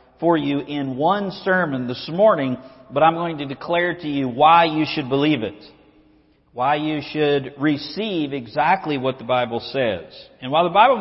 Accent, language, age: American, English, 50-69